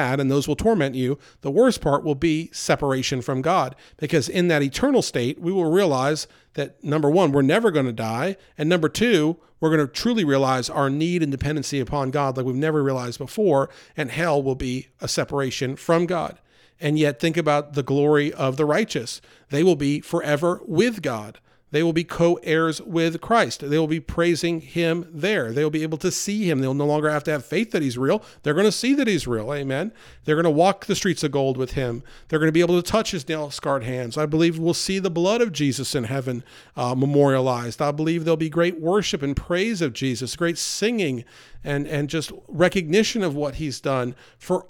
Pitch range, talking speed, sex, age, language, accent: 140-180 Hz, 215 wpm, male, 40-59, English, American